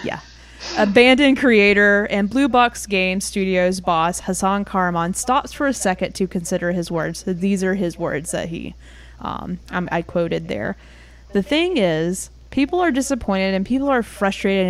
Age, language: 20-39, English